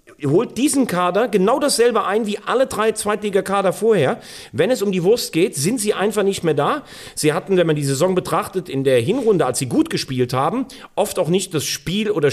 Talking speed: 215 wpm